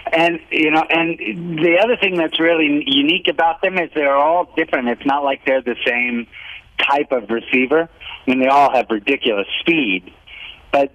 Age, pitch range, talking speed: 50-69, 125-175 Hz, 180 wpm